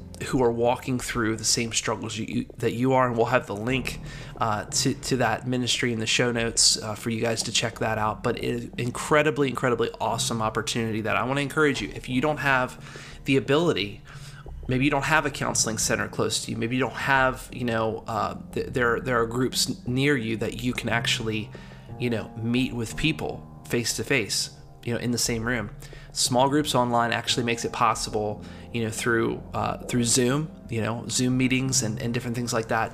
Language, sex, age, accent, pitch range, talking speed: English, male, 30-49, American, 115-135 Hz, 210 wpm